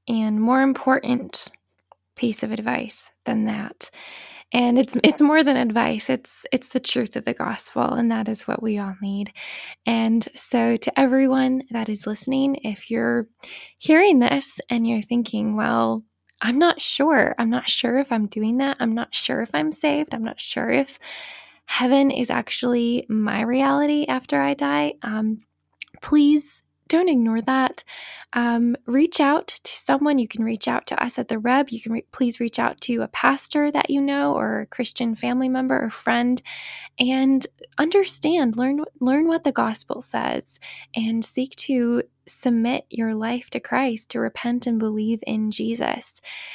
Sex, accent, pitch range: female, American, 225-270 Hz